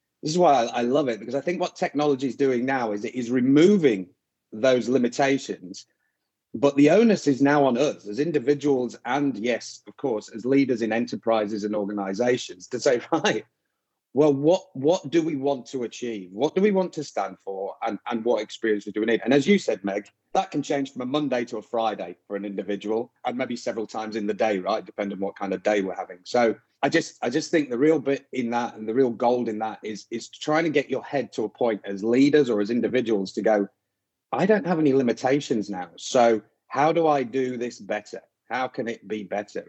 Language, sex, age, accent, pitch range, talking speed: English, male, 30-49, British, 110-145 Hz, 225 wpm